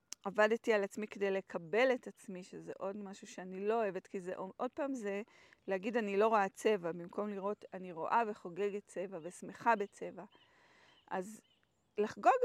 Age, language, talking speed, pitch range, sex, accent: 30-49, Hebrew, 160 wpm, 200-250 Hz, female, native